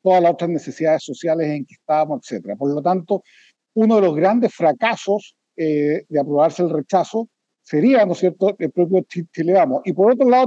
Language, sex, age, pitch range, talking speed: Spanish, male, 50-69, 150-200 Hz, 205 wpm